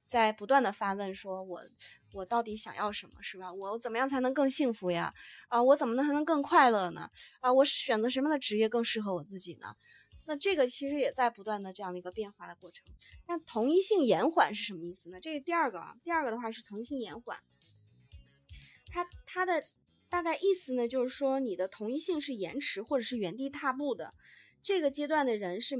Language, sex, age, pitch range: Chinese, female, 20-39, 200-290 Hz